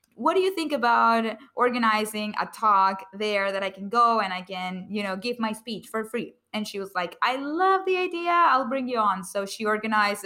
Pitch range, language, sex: 195-225 Hz, English, female